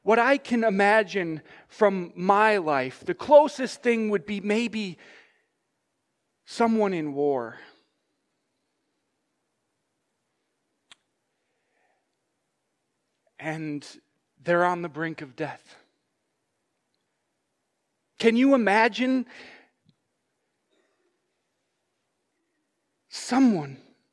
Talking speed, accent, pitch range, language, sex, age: 65 wpm, American, 160-235 Hz, English, male, 40-59